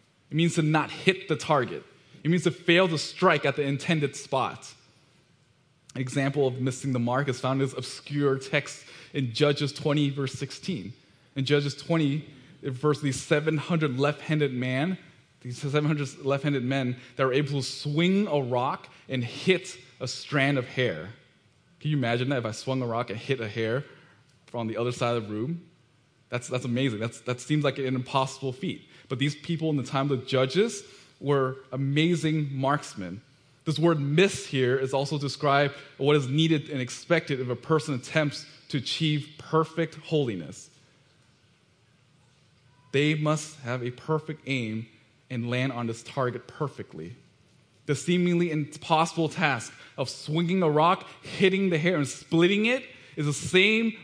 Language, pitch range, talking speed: English, 130-155 Hz, 170 wpm